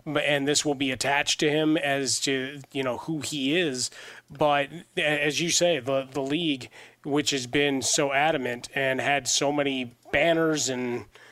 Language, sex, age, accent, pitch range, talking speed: English, male, 30-49, American, 135-155 Hz, 170 wpm